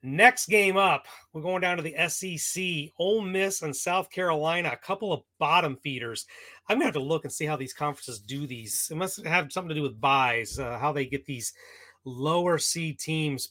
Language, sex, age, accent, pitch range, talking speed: English, male, 30-49, American, 150-190 Hz, 215 wpm